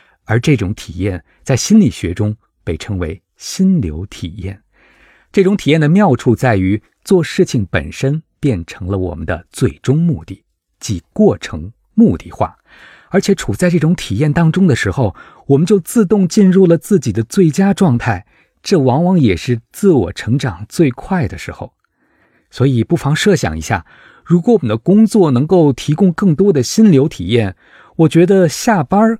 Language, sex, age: Chinese, male, 50-69